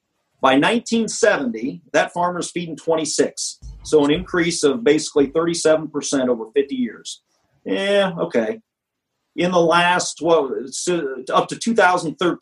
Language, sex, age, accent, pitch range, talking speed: English, male, 40-59, American, 130-195 Hz, 115 wpm